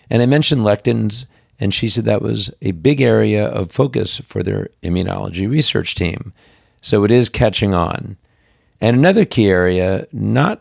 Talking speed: 165 wpm